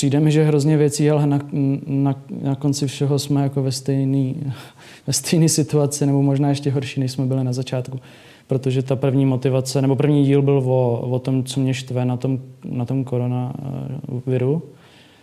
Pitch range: 130-145 Hz